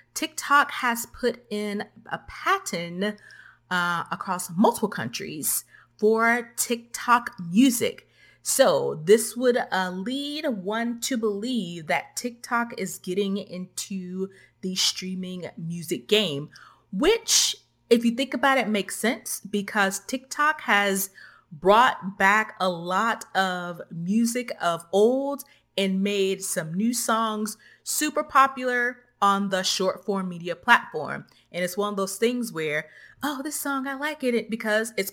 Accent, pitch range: American, 190-255 Hz